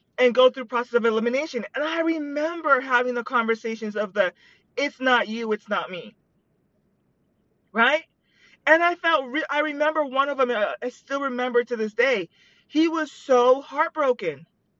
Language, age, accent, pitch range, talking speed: English, 30-49, American, 225-305 Hz, 165 wpm